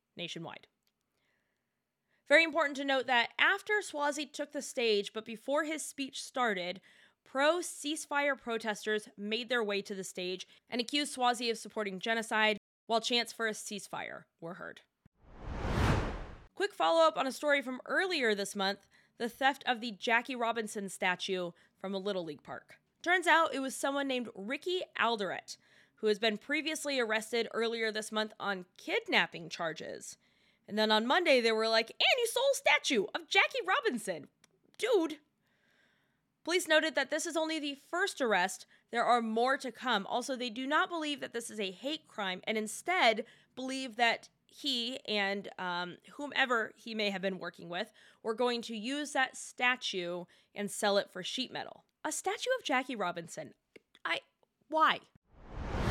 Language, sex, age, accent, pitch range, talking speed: English, female, 20-39, American, 215-290 Hz, 165 wpm